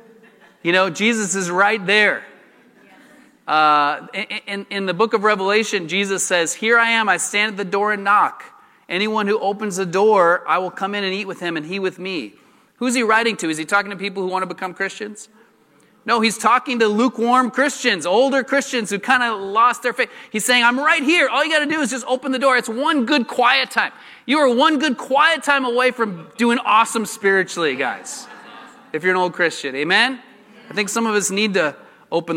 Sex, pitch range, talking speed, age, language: male, 185-240 Hz, 215 wpm, 30-49, English